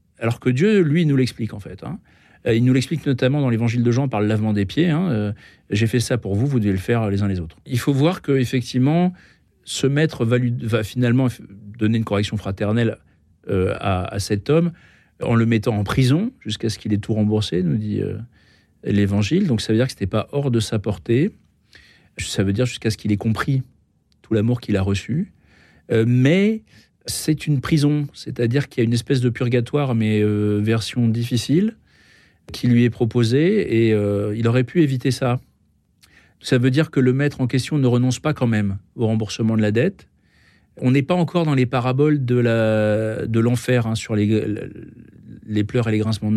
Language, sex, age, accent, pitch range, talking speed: French, male, 40-59, French, 105-135 Hz, 210 wpm